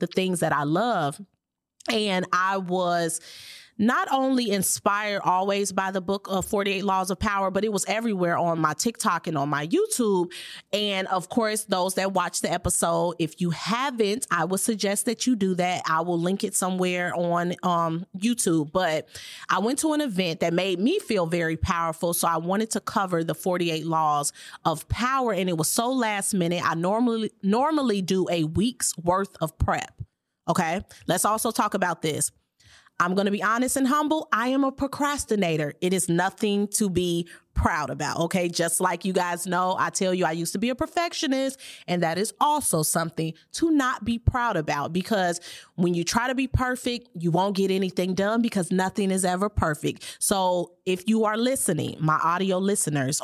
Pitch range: 170-215 Hz